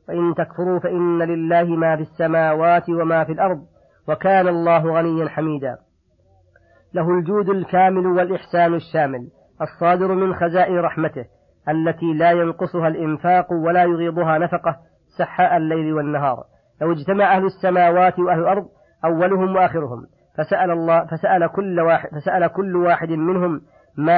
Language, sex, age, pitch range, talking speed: Arabic, female, 40-59, 160-180 Hz, 125 wpm